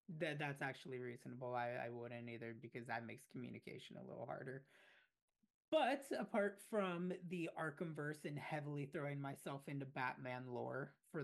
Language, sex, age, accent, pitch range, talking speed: English, male, 30-49, American, 135-170 Hz, 150 wpm